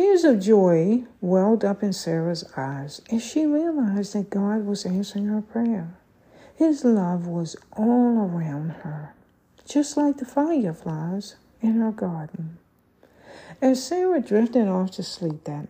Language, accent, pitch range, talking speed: English, American, 170-240 Hz, 140 wpm